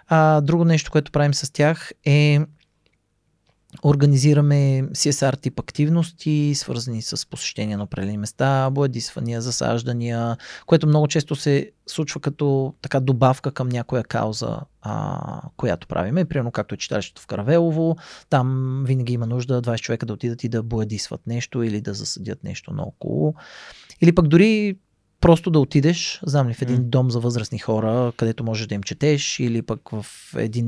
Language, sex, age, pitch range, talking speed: Bulgarian, male, 30-49, 120-150 Hz, 155 wpm